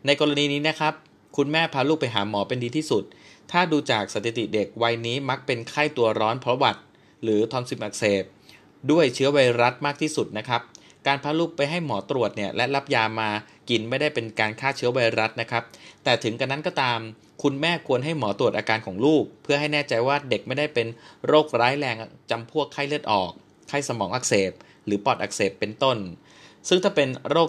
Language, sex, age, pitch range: Thai, male, 20-39, 115-150 Hz